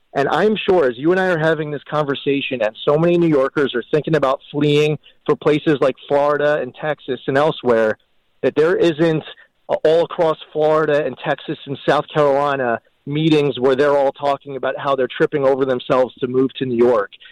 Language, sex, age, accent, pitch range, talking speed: English, male, 30-49, American, 135-165 Hz, 190 wpm